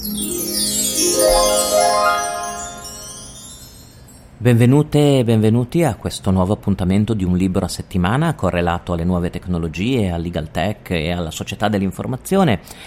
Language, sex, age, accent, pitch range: Italian, male, 40-59, native, 85-110 Hz